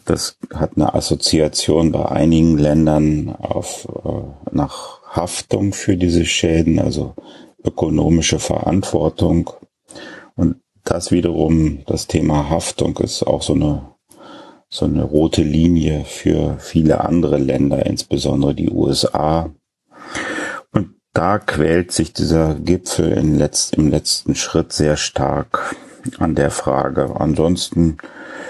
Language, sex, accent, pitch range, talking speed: German, male, German, 75-80 Hz, 110 wpm